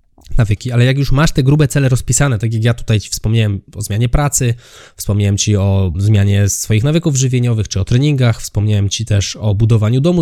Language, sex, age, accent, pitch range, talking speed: Polish, male, 20-39, native, 110-140 Hz, 200 wpm